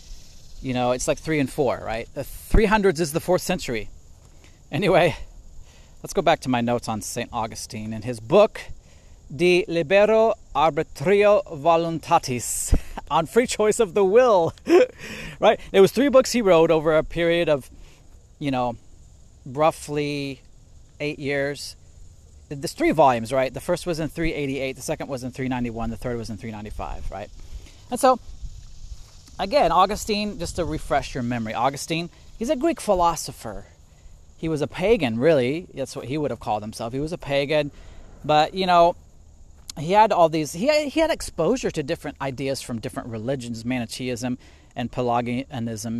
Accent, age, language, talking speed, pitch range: American, 30-49, English, 170 wpm, 105-165 Hz